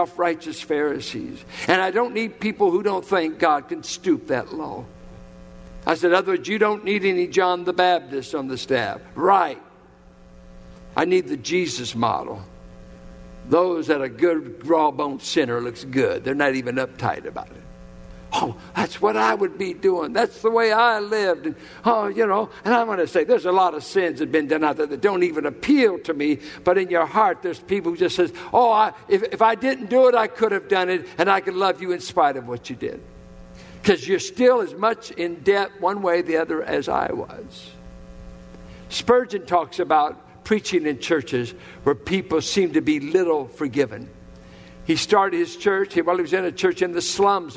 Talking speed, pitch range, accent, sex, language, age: 200 wpm, 150-225 Hz, American, male, English, 60-79